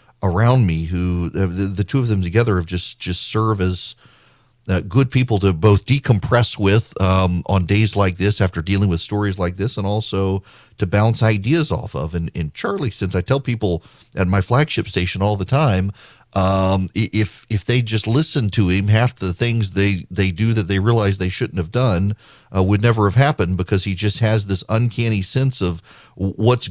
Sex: male